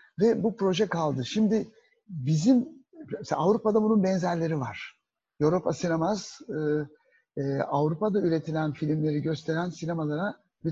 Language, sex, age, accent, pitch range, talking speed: Turkish, male, 60-79, native, 145-205 Hz, 110 wpm